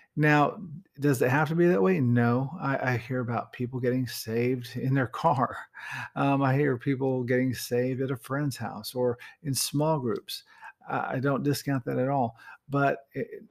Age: 50-69